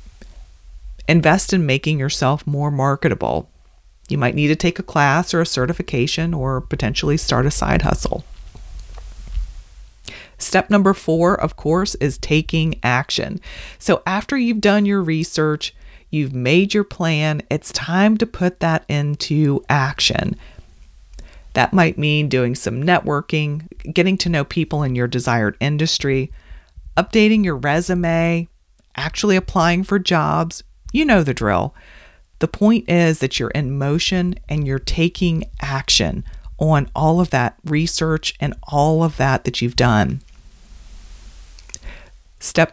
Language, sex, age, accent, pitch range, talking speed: English, female, 40-59, American, 130-175 Hz, 135 wpm